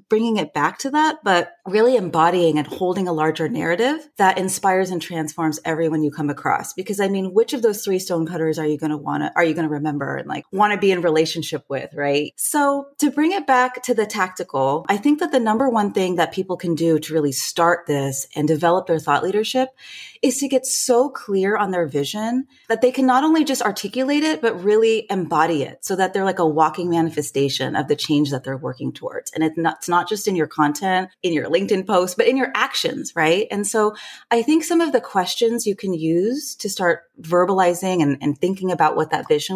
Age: 30-49